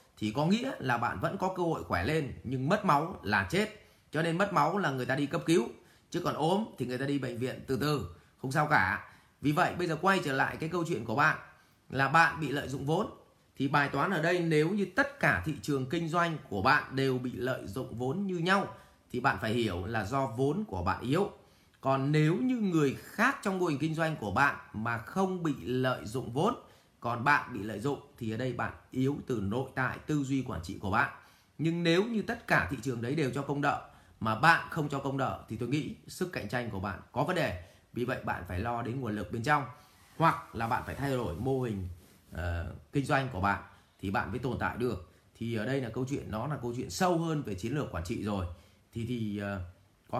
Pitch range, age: 110-160 Hz, 20-39